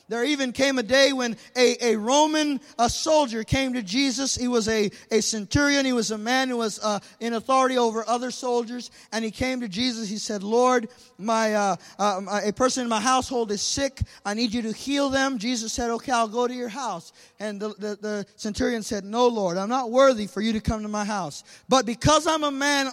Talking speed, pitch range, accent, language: 225 wpm, 230-285 Hz, American, English